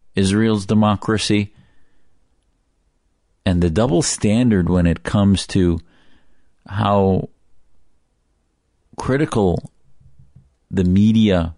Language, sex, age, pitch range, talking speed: English, male, 40-59, 85-105 Hz, 75 wpm